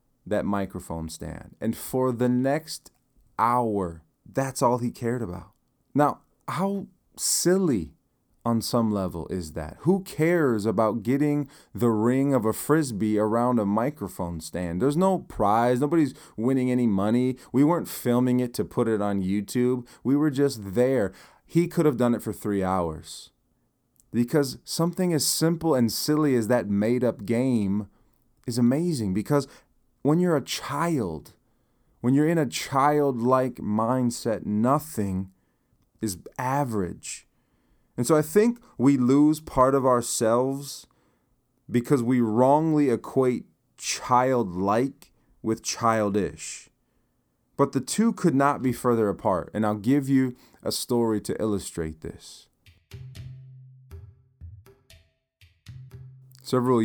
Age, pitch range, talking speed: 30-49, 105-140 Hz, 130 wpm